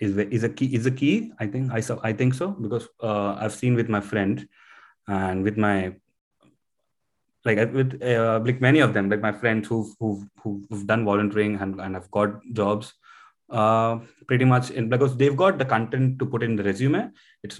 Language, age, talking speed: English, 30-49, 200 wpm